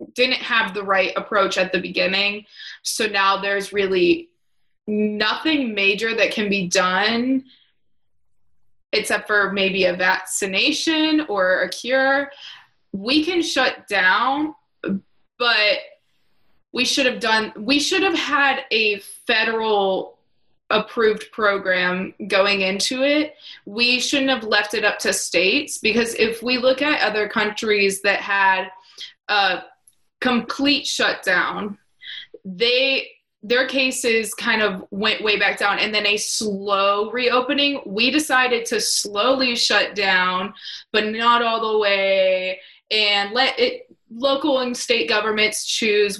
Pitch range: 200-260 Hz